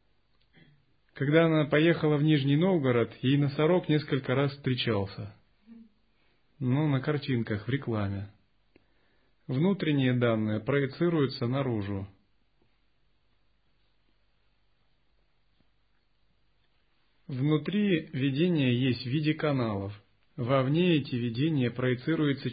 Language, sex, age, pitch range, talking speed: Russian, male, 30-49, 120-150 Hz, 80 wpm